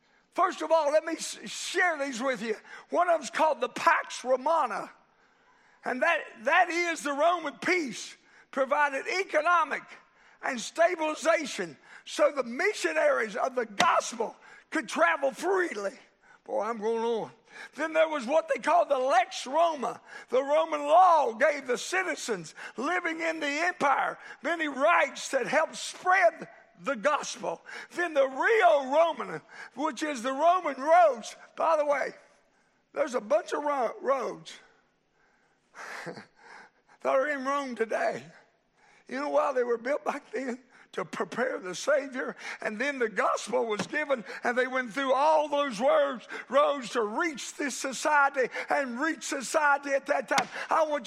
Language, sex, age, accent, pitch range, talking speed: English, male, 50-69, American, 265-330 Hz, 145 wpm